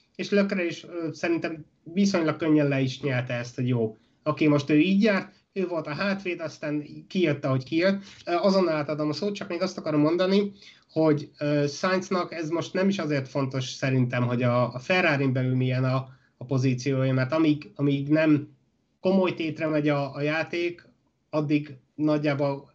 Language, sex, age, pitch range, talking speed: Hungarian, male, 30-49, 135-165 Hz, 170 wpm